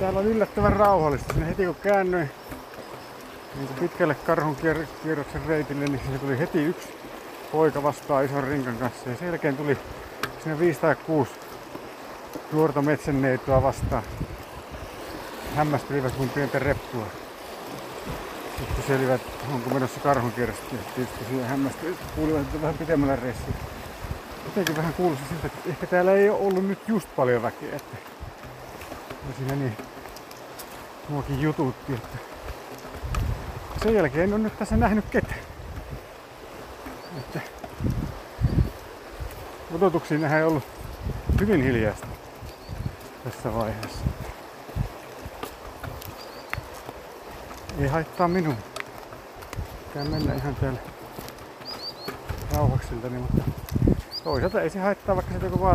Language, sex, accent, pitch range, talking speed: Finnish, male, native, 130-165 Hz, 105 wpm